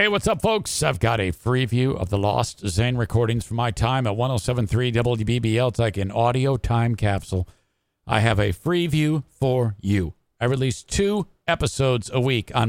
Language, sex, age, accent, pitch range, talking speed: English, male, 50-69, American, 115-160 Hz, 190 wpm